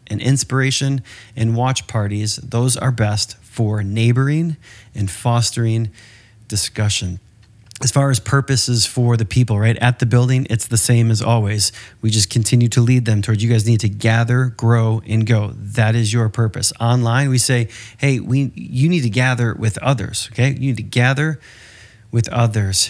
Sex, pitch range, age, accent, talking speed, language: male, 110-125 Hz, 30-49, American, 175 wpm, English